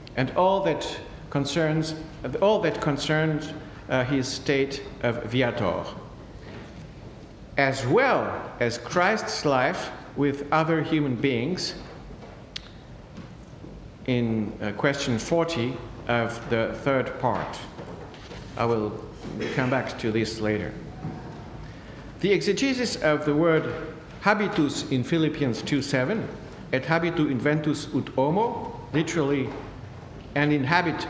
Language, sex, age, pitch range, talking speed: English, male, 60-79, 125-160 Hz, 105 wpm